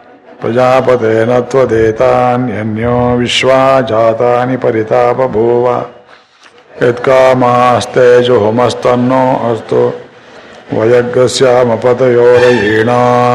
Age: 60-79